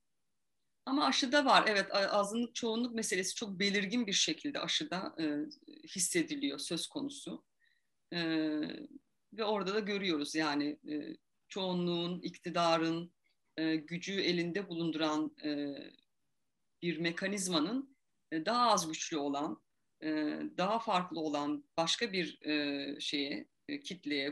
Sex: female